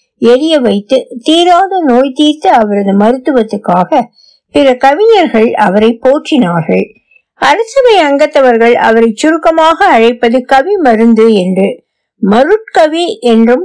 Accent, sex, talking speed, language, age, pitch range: native, female, 55 wpm, Tamil, 60-79, 215-315 Hz